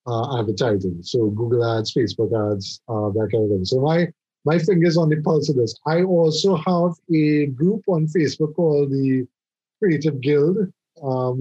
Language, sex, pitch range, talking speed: English, male, 135-170 Hz, 175 wpm